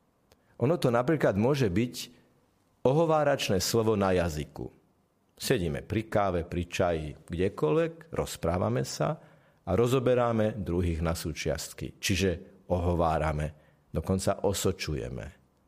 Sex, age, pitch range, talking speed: male, 50-69, 85-125 Hz, 100 wpm